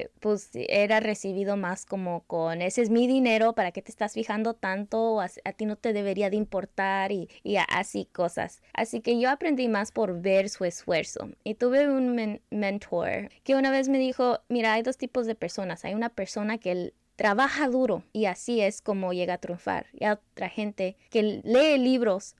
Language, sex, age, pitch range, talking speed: English, female, 20-39, 200-265 Hz, 200 wpm